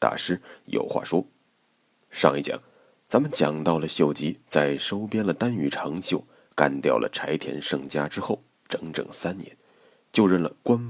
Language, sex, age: Chinese, male, 30-49